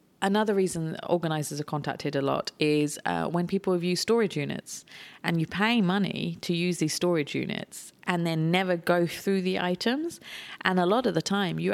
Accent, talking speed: British, 195 wpm